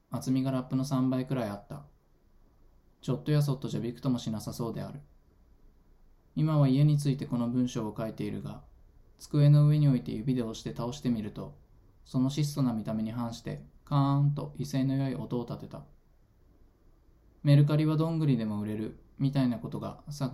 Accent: native